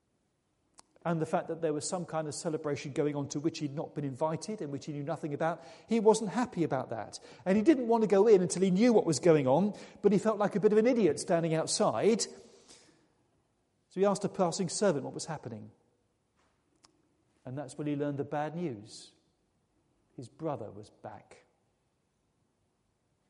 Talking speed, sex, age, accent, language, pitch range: 195 wpm, male, 40-59, British, English, 140-195 Hz